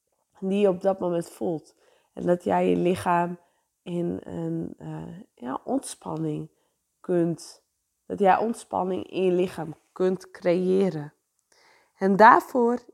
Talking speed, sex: 125 wpm, female